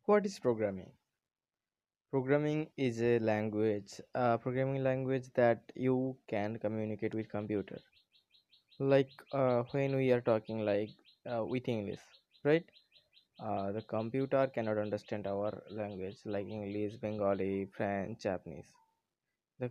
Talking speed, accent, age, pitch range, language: 120 wpm, native, 20-39, 105-135 Hz, Bengali